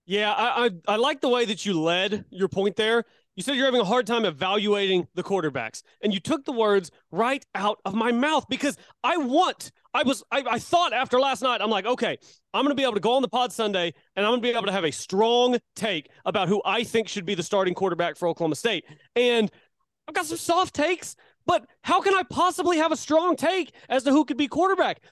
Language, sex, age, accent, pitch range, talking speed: English, male, 30-49, American, 205-275 Hz, 245 wpm